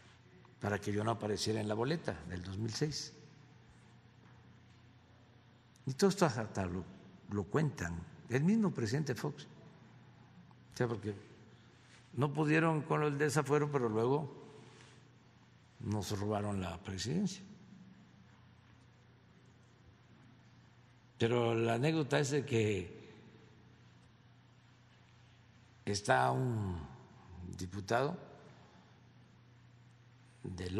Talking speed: 85 wpm